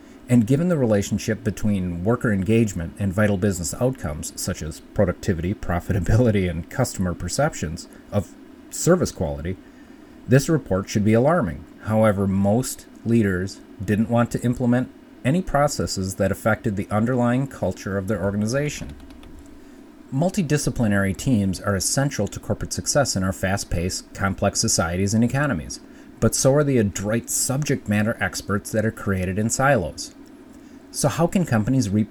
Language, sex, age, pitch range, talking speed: English, male, 30-49, 100-135 Hz, 140 wpm